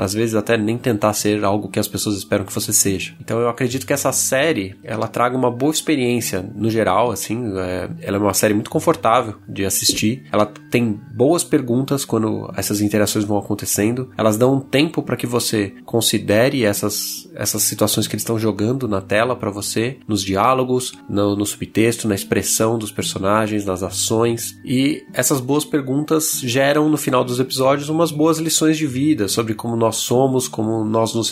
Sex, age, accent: male, 20-39, Brazilian